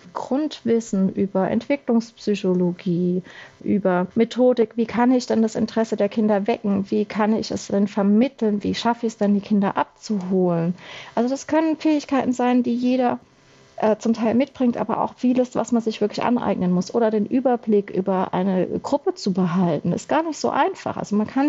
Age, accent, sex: 30-49, German, female